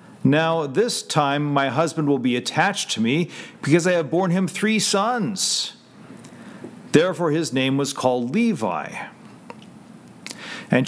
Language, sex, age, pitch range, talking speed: English, male, 50-69, 145-200 Hz, 130 wpm